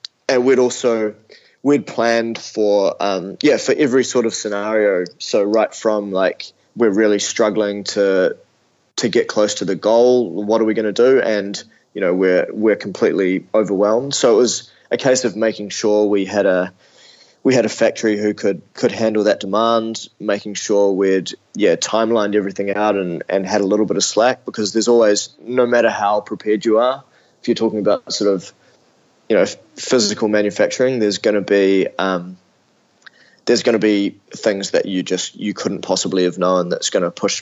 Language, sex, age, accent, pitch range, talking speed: English, male, 20-39, Australian, 100-115 Hz, 190 wpm